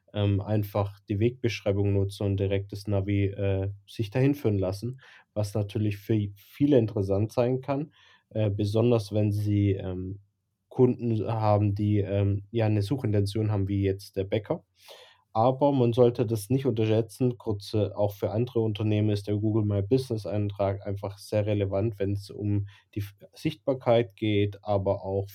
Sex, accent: male, German